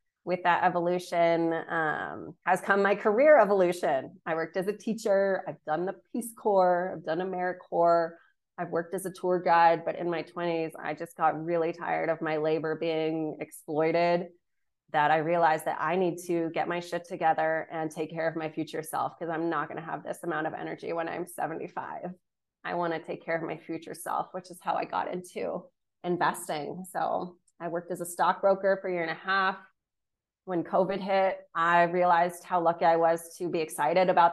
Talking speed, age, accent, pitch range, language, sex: 200 wpm, 20-39, American, 165-180 Hz, English, female